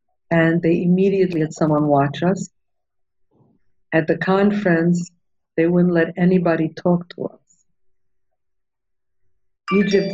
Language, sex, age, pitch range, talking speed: English, female, 50-69, 150-180 Hz, 105 wpm